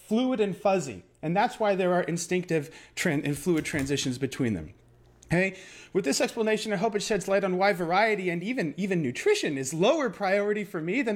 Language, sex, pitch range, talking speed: English, male, 155-230 Hz, 200 wpm